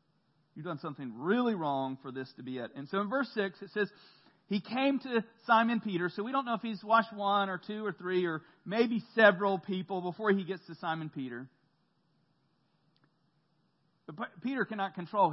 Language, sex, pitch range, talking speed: English, male, 160-230 Hz, 190 wpm